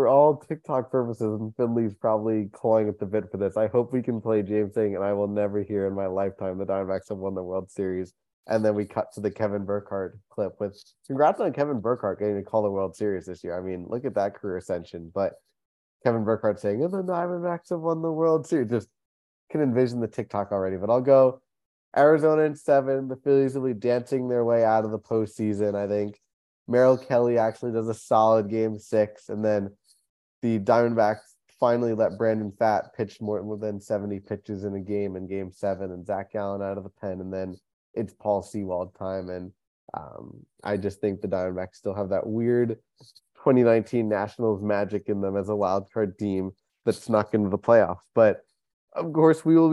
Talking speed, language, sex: 205 wpm, English, male